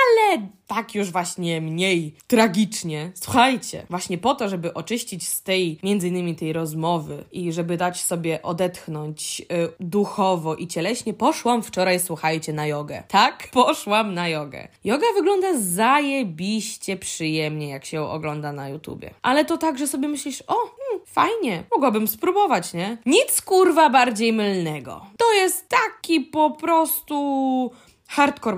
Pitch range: 170-270 Hz